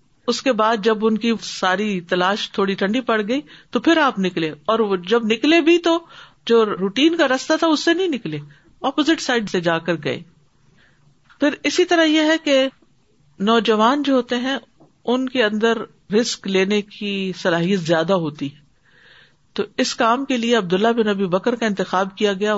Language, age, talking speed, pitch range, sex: Urdu, 50-69, 180 wpm, 190-250 Hz, female